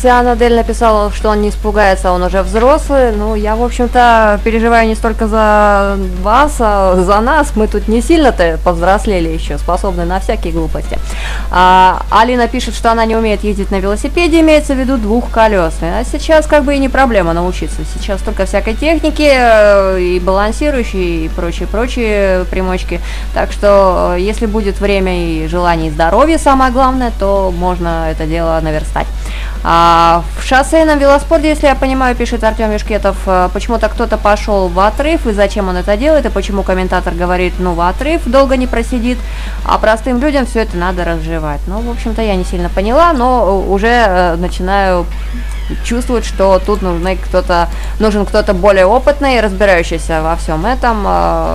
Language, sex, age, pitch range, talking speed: Russian, female, 20-39, 180-235 Hz, 160 wpm